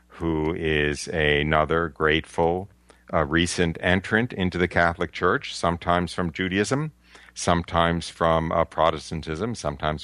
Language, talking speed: English, 115 wpm